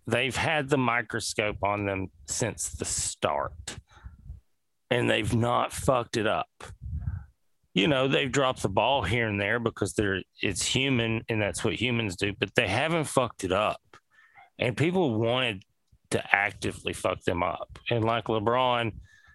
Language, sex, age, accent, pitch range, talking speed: English, male, 40-59, American, 100-125 Hz, 155 wpm